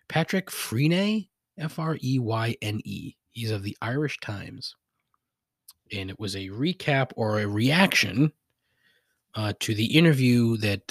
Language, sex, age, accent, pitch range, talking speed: English, male, 30-49, American, 95-155 Hz, 115 wpm